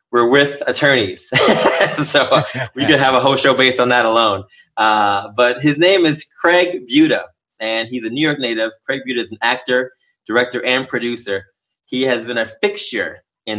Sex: male